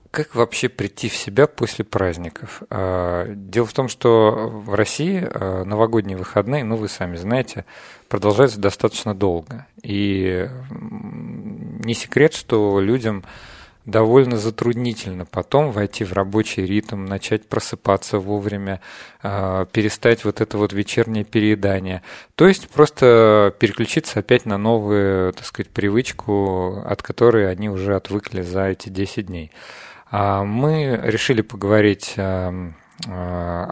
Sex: male